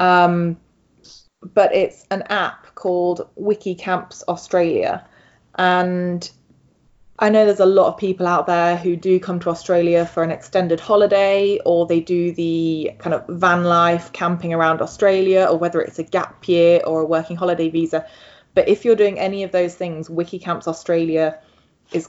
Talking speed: 165 wpm